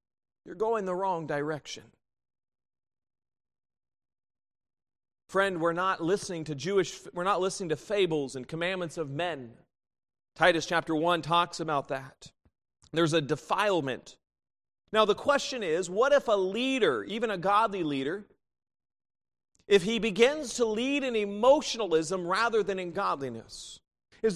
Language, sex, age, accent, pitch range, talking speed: English, male, 40-59, American, 175-235 Hz, 130 wpm